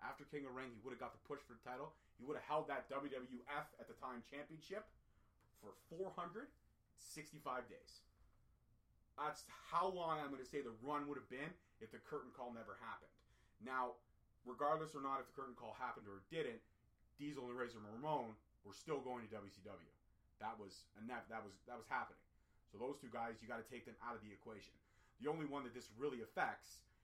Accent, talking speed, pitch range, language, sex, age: American, 210 wpm, 105-135 Hz, English, male, 30-49